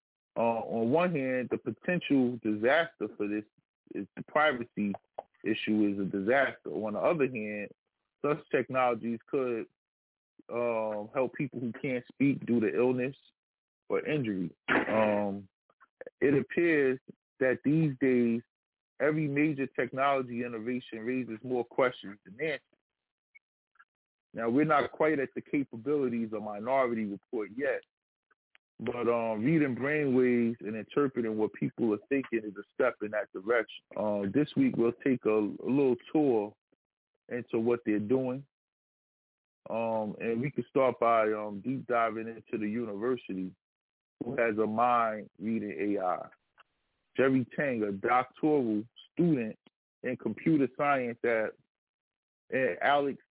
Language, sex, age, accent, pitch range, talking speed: English, male, 20-39, American, 110-135 Hz, 135 wpm